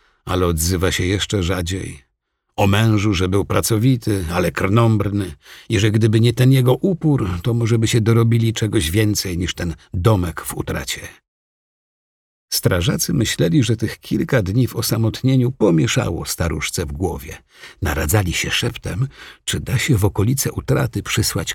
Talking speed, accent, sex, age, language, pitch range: 150 wpm, native, male, 50-69, Polish, 85-120 Hz